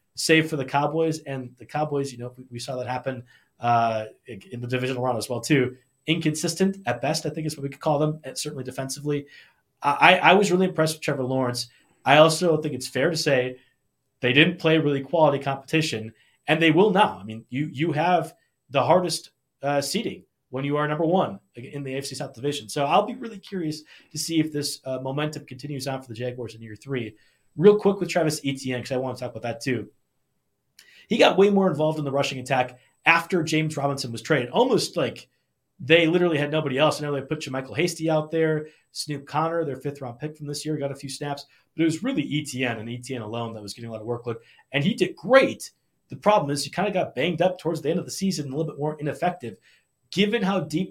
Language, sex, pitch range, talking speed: English, male, 130-160 Hz, 230 wpm